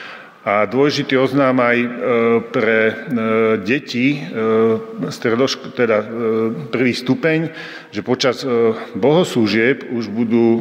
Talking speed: 120 wpm